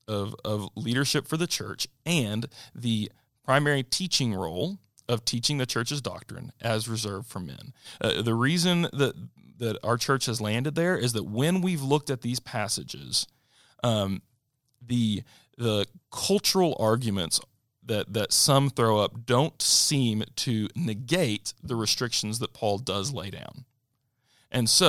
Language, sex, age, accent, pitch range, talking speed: English, male, 40-59, American, 110-135 Hz, 145 wpm